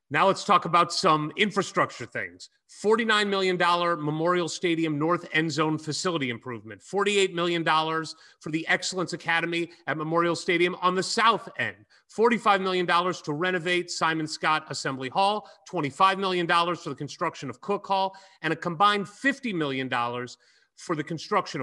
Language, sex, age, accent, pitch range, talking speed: English, male, 30-49, American, 145-185 Hz, 145 wpm